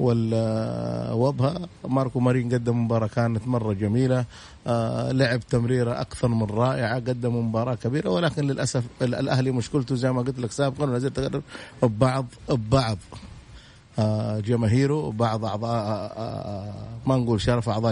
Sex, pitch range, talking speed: male, 120-150 Hz, 115 wpm